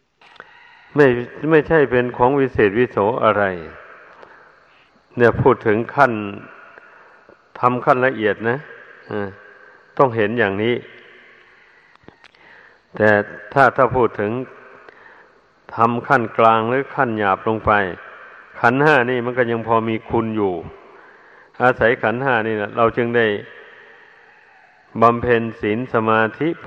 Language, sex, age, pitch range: Thai, male, 60-79, 110-135 Hz